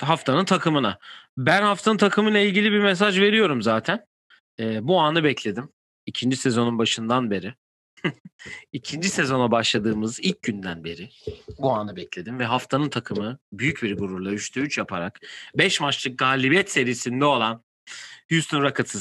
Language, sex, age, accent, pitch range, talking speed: Turkish, male, 40-59, native, 115-155 Hz, 140 wpm